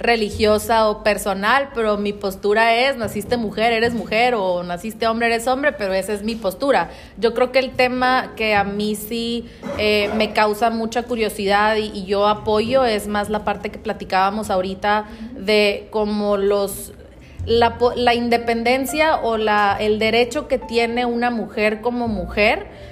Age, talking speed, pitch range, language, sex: 30-49, 160 wpm, 205-235 Hz, English, female